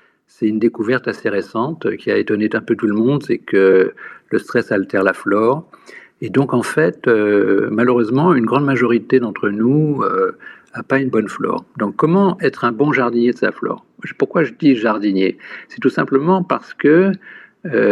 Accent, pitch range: French, 110-150 Hz